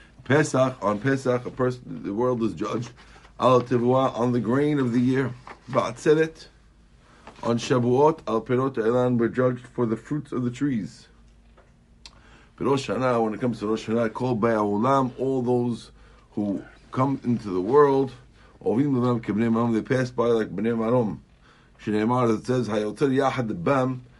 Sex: male